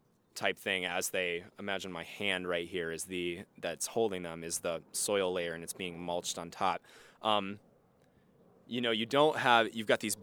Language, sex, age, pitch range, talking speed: English, male, 20-39, 90-110 Hz, 195 wpm